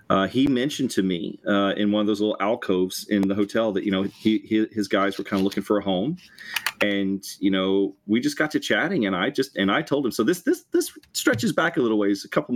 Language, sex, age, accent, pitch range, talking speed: English, male, 30-49, American, 100-115 Hz, 270 wpm